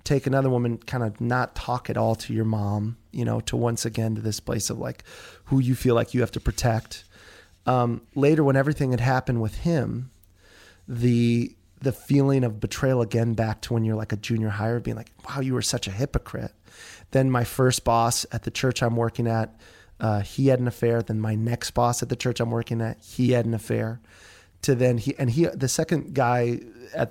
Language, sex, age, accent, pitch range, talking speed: English, male, 30-49, American, 115-135 Hz, 215 wpm